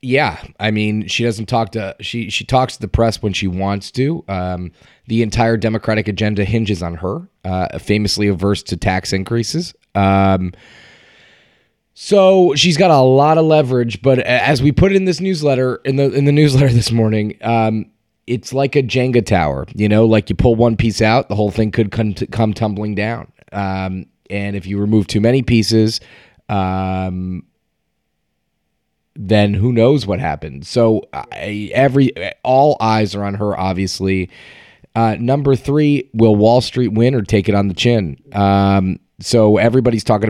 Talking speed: 170 wpm